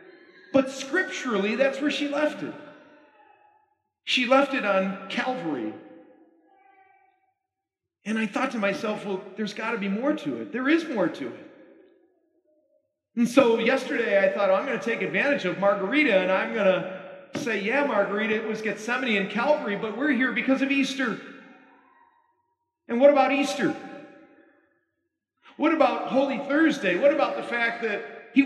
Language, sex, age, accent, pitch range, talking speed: English, male, 40-59, American, 220-290 Hz, 155 wpm